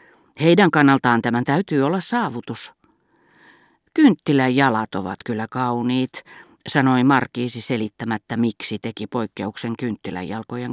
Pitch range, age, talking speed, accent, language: 115-145 Hz, 40-59, 95 wpm, native, Finnish